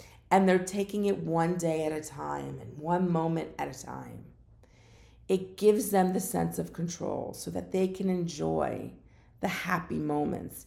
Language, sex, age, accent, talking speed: English, female, 50-69, American, 170 wpm